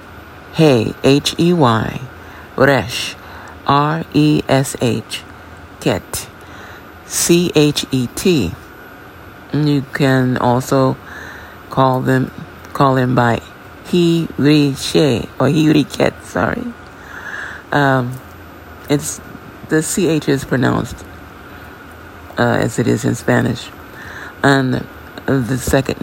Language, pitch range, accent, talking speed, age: English, 95-145 Hz, American, 95 wpm, 50-69